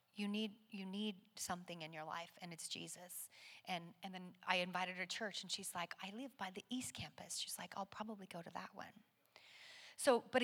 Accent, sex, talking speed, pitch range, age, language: American, female, 220 wpm, 180-220 Hz, 30-49, English